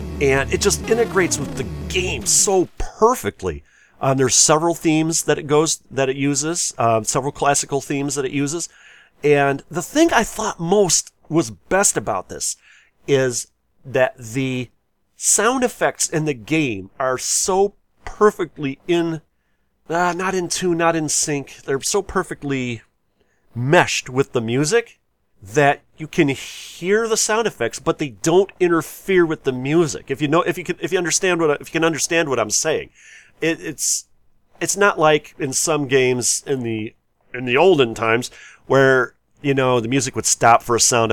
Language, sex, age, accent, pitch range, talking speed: English, male, 40-59, American, 125-175 Hz, 170 wpm